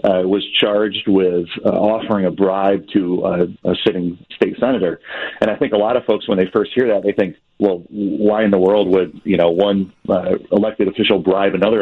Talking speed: 215 wpm